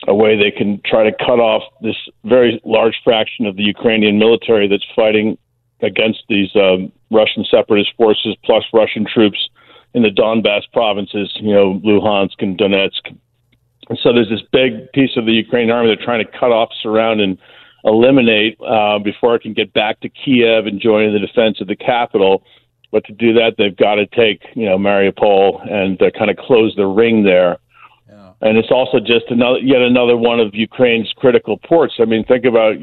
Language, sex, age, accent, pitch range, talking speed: English, male, 50-69, American, 105-120 Hz, 190 wpm